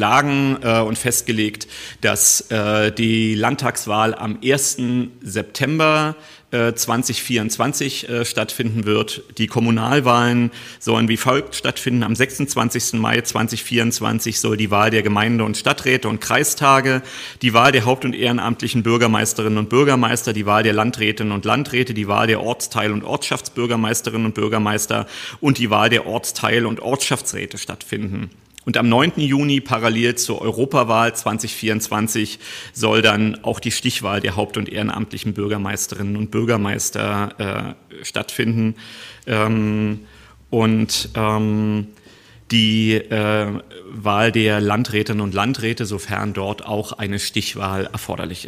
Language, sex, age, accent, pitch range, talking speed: German, male, 40-59, German, 105-120 Hz, 130 wpm